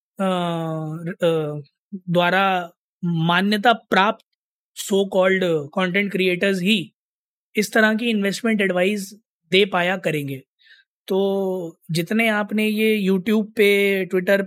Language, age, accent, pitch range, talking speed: Hindi, 20-39, native, 170-200 Hz, 105 wpm